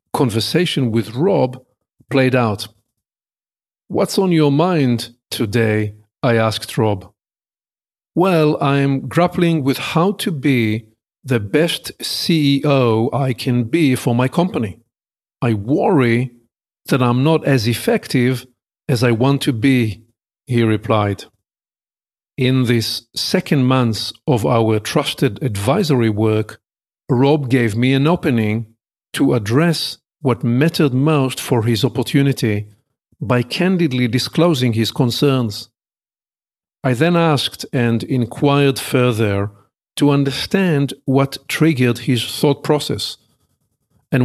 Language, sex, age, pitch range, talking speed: English, male, 50-69, 115-145 Hz, 115 wpm